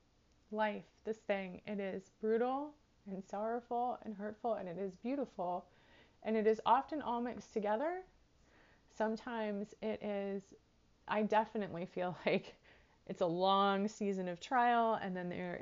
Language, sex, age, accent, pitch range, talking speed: English, female, 30-49, American, 190-225 Hz, 140 wpm